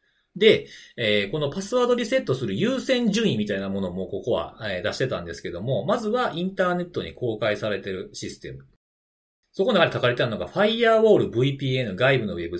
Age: 40-59